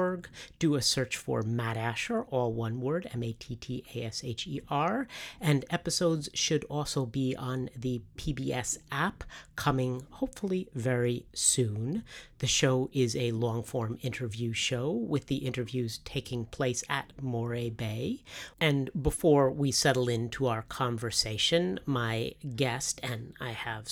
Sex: female